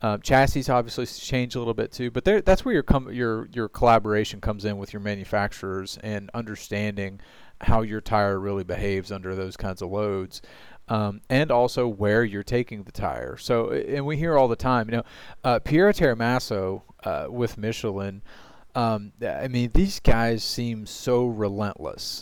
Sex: male